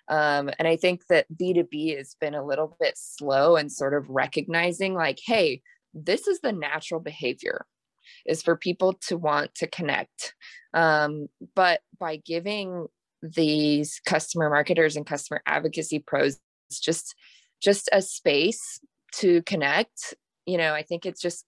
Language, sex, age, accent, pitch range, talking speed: English, female, 20-39, American, 150-175 Hz, 150 wpm